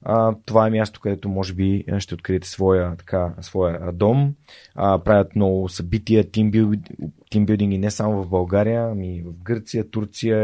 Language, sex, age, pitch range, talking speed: Bulgarian, male, 20-39, 95-110 Hz, 155 wpm